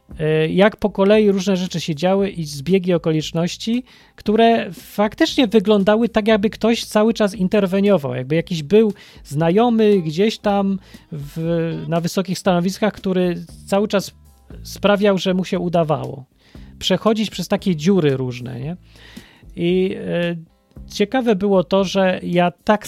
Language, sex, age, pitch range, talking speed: Polish, male, 30-49, 165-205 Hz, 125 wpm